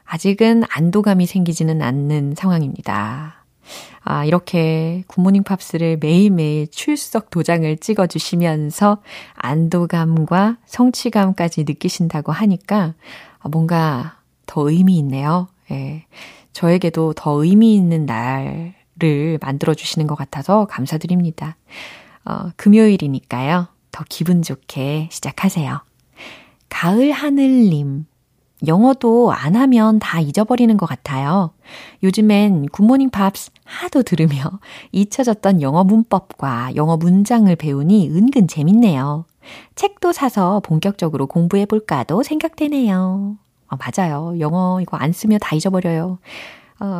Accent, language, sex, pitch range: native, Korean, female, 155-210 Hz